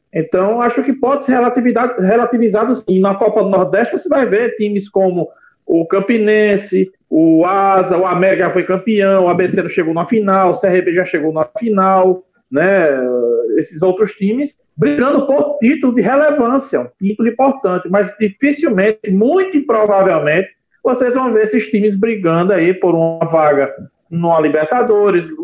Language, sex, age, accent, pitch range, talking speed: Portuguese, male, 40-59, Brazilian, 170-230 Hz, 155 wpm